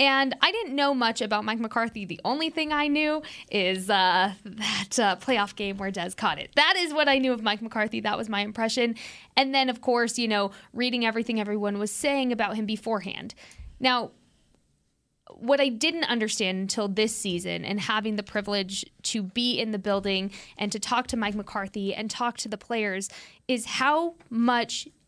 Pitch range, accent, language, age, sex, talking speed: 210-275 Hz, American, English, 20-39, female, 190 wpm